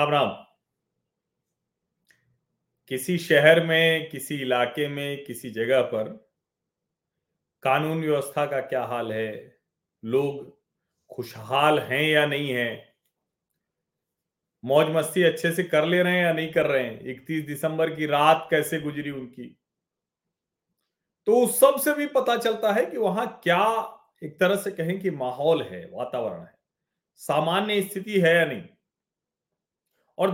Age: 40-59